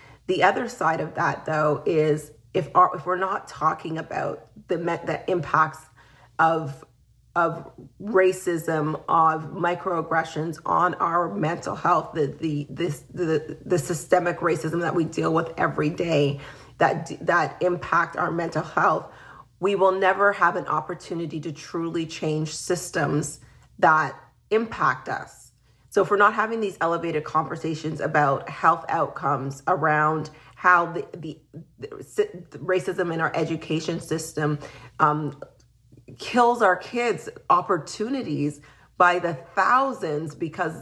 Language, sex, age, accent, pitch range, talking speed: English, female, 30-49, American, 150-180 Hz, 130 wpm